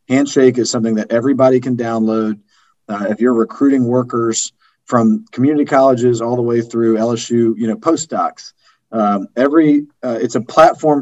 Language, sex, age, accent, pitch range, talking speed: English, male, 40-59, American, 110-130 Hz, 160 wpm